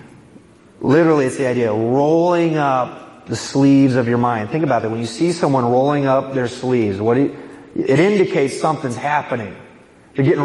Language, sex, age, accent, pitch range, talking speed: English, male, 30-49, American, 115-150 Hz, 185 wpm